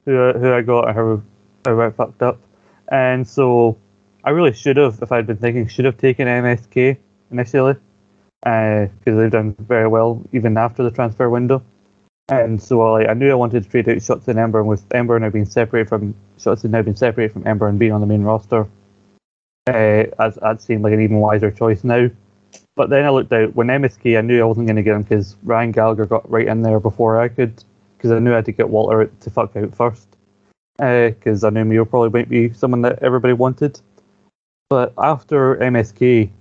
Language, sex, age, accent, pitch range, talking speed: English, male, 20-39, British, 105-125 Hz, 215 wpm